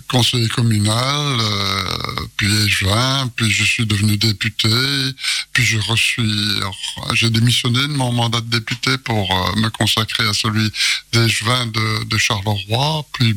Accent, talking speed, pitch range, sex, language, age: French, 145 wpm, 115-135 Hz, male, French, 60-79